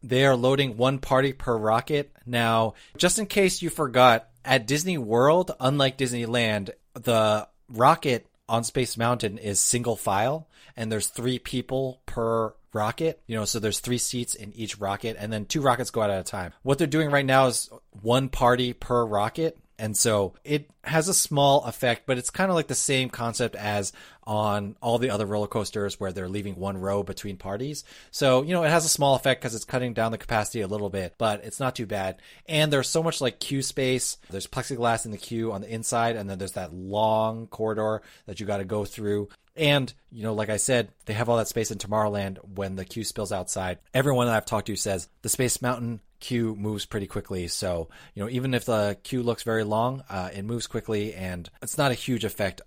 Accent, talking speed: American, 215 wpm